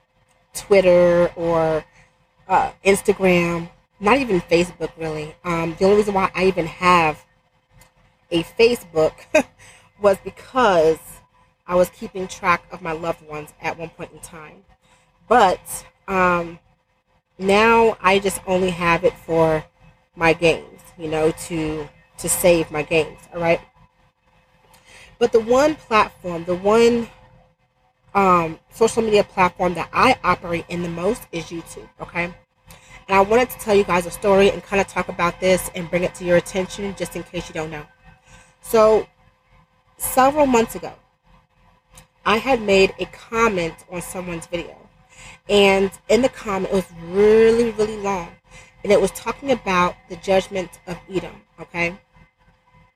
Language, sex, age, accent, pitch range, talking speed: English, female, 30-49, American, 165-200 Hz, 145 wpm